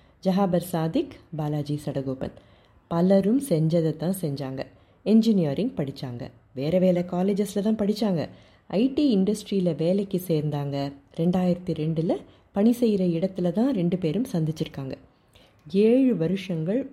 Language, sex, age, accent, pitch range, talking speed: Tamil, female, 30-49, native, 150-205 Hz, 105 wpm